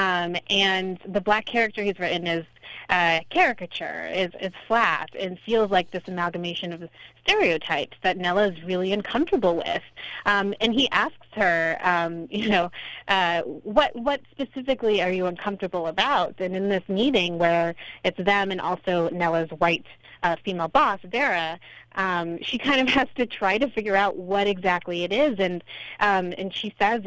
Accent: American